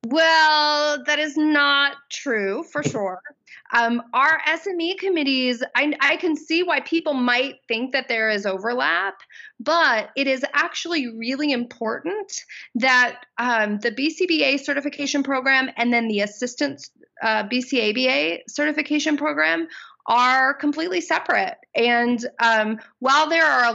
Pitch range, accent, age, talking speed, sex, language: 235-305 Hz, American, 30-49, 130 wpm, female, English